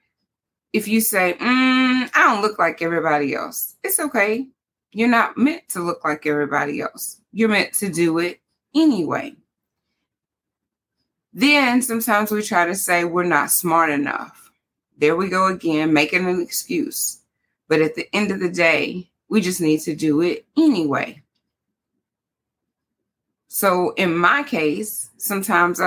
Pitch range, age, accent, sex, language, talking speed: 155-215 Hz, 20-39, American, female, English, 145 wpm